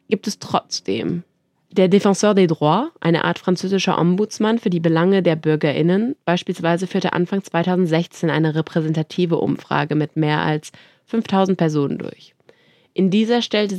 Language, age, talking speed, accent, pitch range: French, 20-39, 140 wpm, German, 155-195 Hz